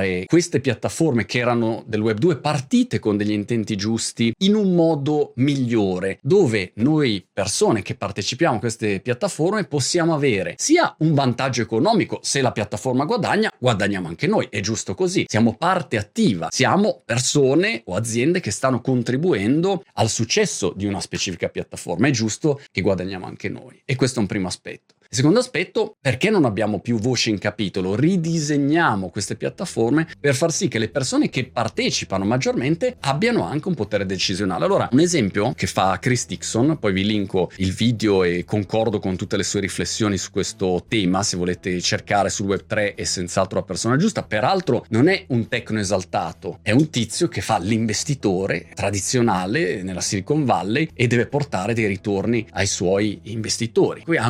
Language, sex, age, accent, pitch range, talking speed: Italian, male, 30-49, native, 100-140 Hz, 170 wpm